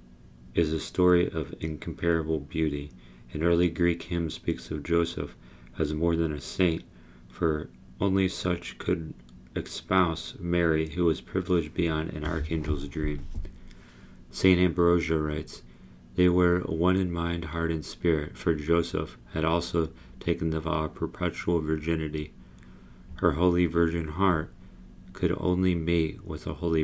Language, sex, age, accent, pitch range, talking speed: English, male, 40-59, American, 75-85 Hz, 140 wpm